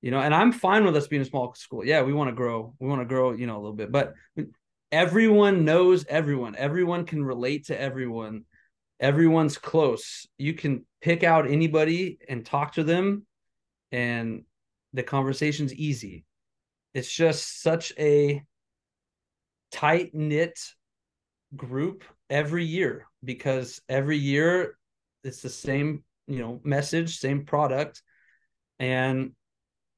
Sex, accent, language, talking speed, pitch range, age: male, American, English, 140 wpm, 125-160 Hz, 20-39